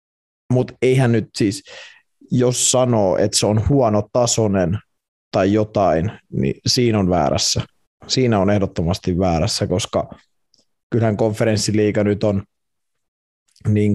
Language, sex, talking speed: Finnish, male, 115 wpm